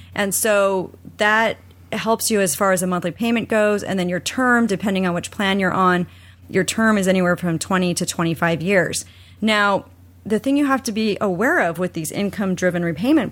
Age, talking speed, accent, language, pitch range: 30-49, 200 wpm, American, English, 175-215 Hz